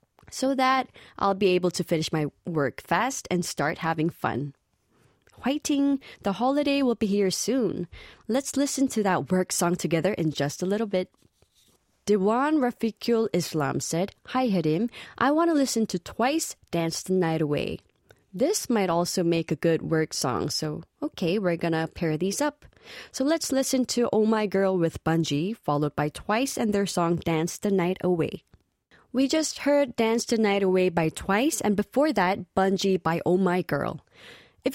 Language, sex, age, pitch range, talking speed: English, female, 20-39, 170-245 Hz, 175 wpm